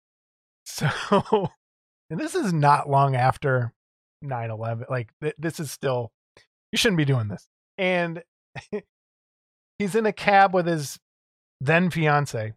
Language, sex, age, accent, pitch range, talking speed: English, male, 20-39, American, 135-200 Hz, 125 wpm